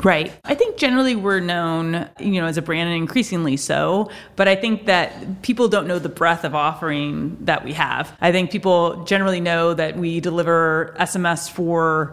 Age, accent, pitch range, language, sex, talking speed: 30-49, American, 160-190 Hz, English, female, 190 wpm